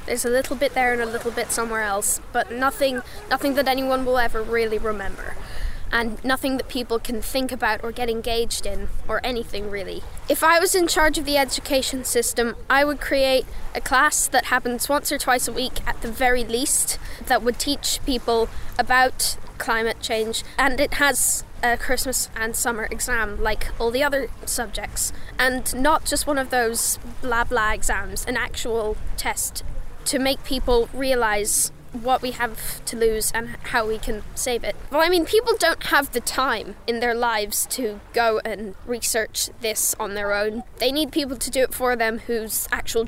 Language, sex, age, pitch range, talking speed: English, female, 10-29, 225-270 Hz, 190 wpm